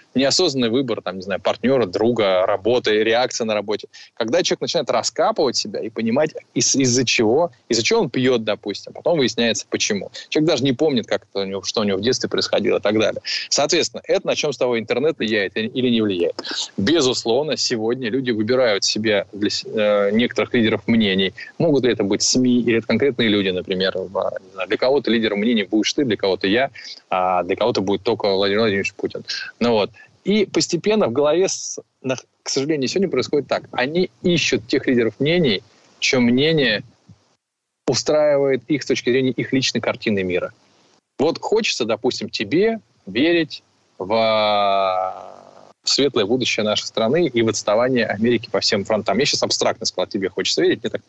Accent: native